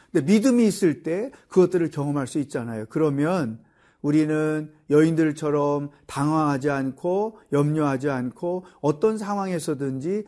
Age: 40-59